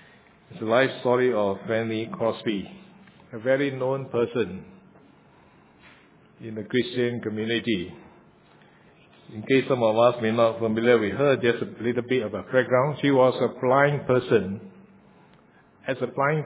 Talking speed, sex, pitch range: 145 wpm, male, 115-135 Hz